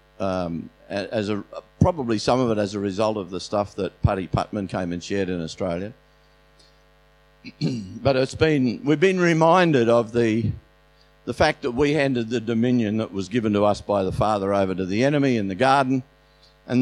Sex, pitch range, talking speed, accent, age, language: male, 95-125 Hz, 185 wpm, Australian, 50-69, English